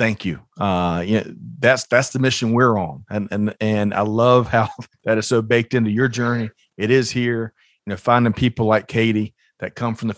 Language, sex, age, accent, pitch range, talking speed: English, male, 40-59, American, 105-120 Hz, 220 wpm